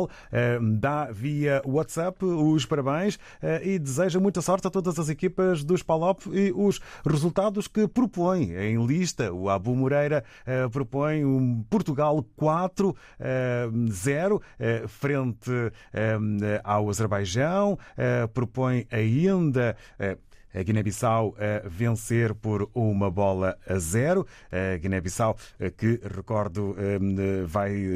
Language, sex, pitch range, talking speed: Portuguese, male, 105-150 Hz, 105 wpm